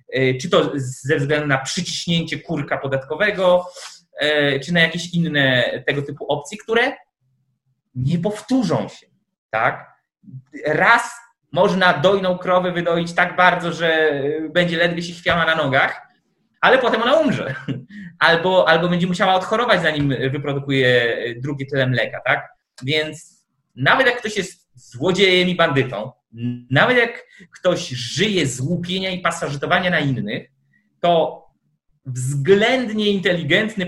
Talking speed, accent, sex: 125 wpm, native, male